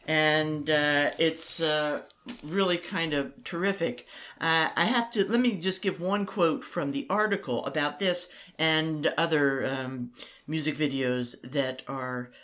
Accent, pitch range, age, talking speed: American, 135-180 Hz, 50-69, 145 wpm